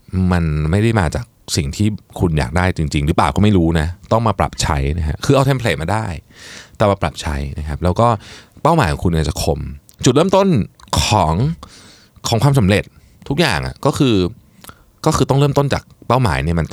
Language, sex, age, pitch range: Thai, male, 20-39, 80-115 Hz